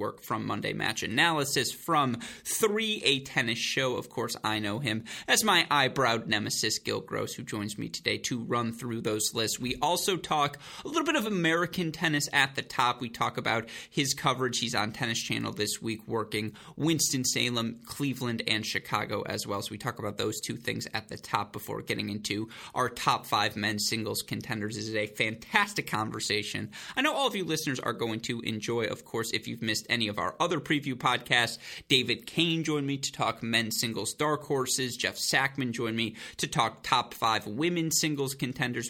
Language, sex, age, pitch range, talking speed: English, male, 20-39, 110-145 Hz, 195 wpm